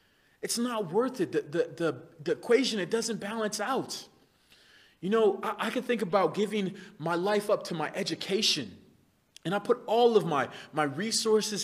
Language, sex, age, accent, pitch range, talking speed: English, male, 30-49, American, 185-230 Hz, 180 wpm